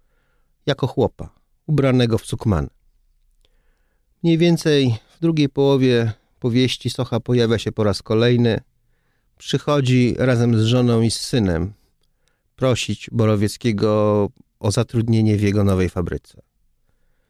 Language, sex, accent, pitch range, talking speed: Polish, male, native, 100-130 Hz, 110 wpm